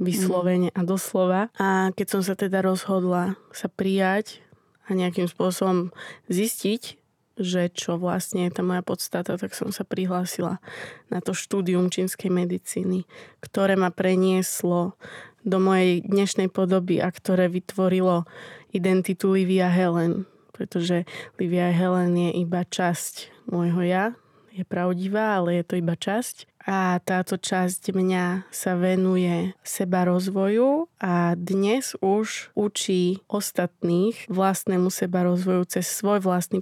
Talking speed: 130 wpm